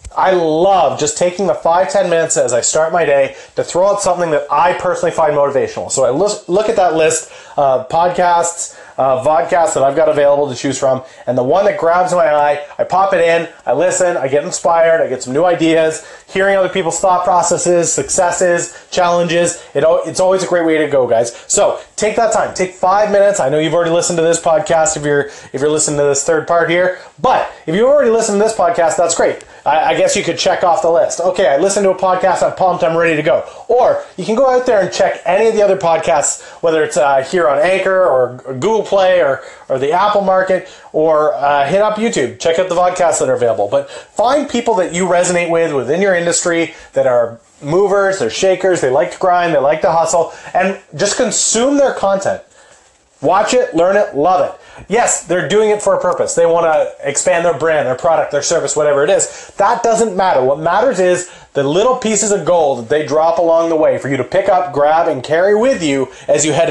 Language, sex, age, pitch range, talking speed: English, male, 30-49, 155-195 Hz, 230 wpm